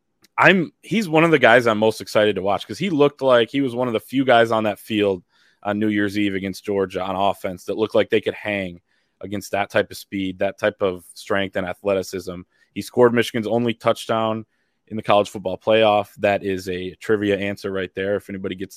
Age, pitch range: 20-39, 100-120 Hz